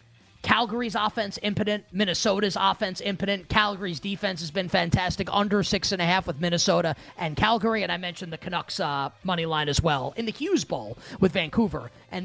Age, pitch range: 30-49, 165-215 Hz